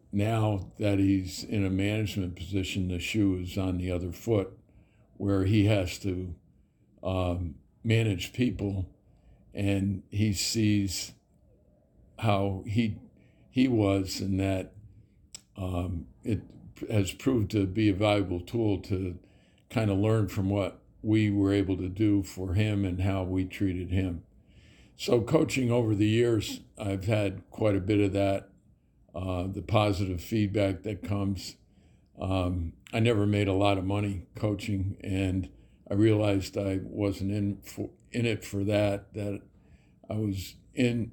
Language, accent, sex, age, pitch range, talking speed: English, American, male, 60-79, 95-110 Hz, 145 wpm